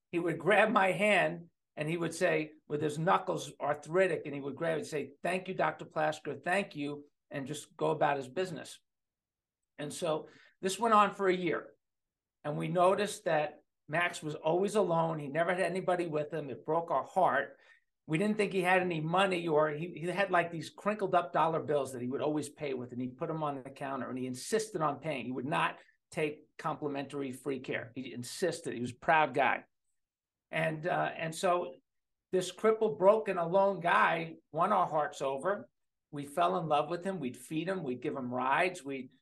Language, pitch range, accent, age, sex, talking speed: English, 145-180 Hz, American, 50-69, male, 205 wpm